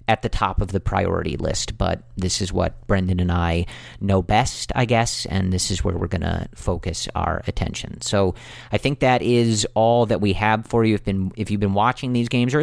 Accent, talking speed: American, 225 wpm